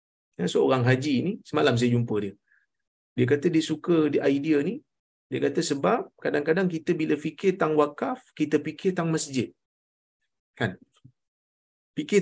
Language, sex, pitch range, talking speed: Malayalam, male, 115-165 Hz, 145 wpm